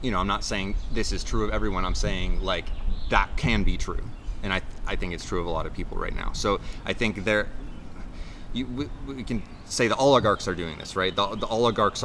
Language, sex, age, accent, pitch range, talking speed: English, male, 30-49, American, 90-115 Hz, 240 wpm